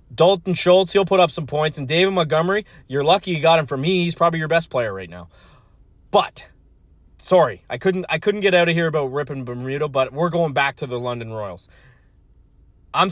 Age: 30-49